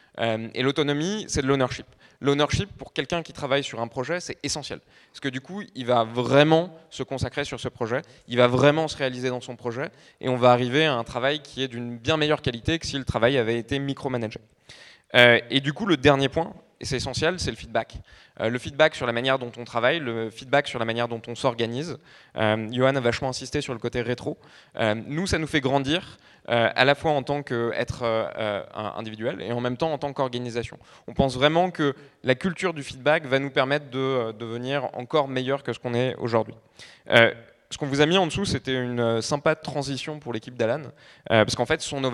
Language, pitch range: French, 115-145 Hz